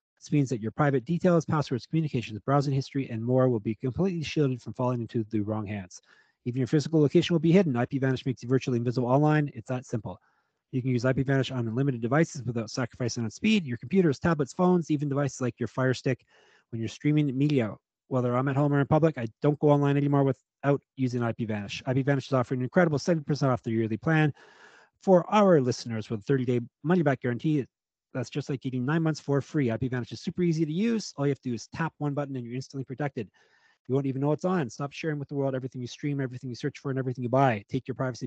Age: 30-49